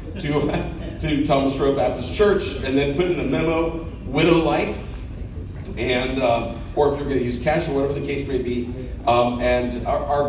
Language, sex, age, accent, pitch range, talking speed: English, male, 40-59, American, 105-135 Hz, 190 wpm